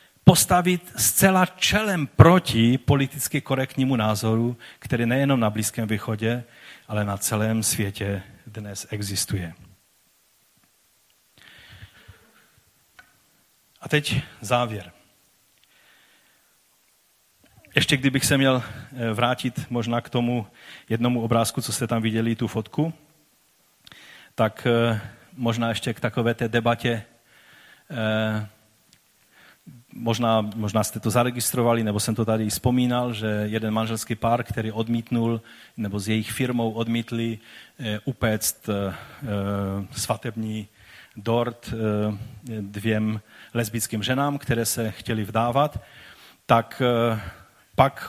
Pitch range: 110-130 Hz